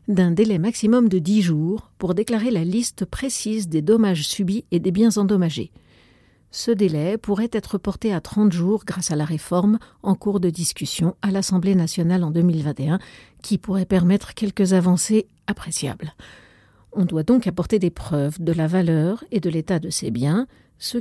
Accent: French